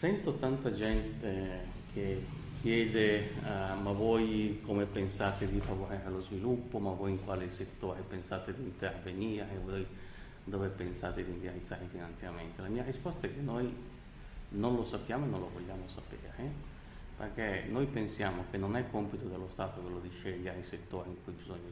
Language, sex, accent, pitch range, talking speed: English, male, Italian, 95-110 Hz, 160 wpm